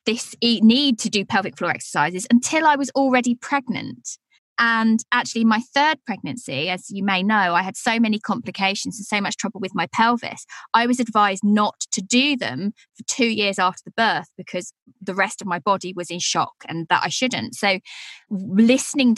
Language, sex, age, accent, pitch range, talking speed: English, female, 20-39, British, 190-245 Hz, 190 wpm